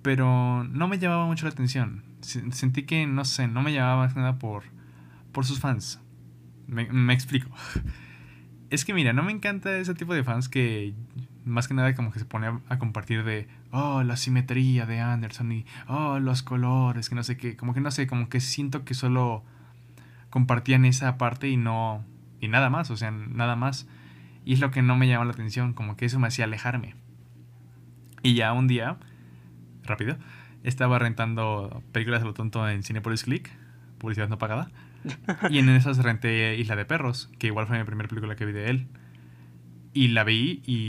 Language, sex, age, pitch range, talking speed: Spanish, male, 20-39, 105-130 Hz, 195 wpm